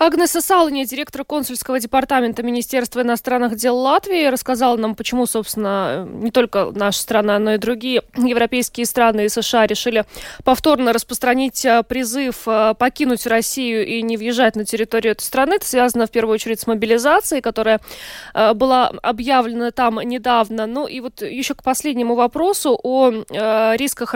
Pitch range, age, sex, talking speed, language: 215-260 Hz, 20-39, female, 145 wpm, Russian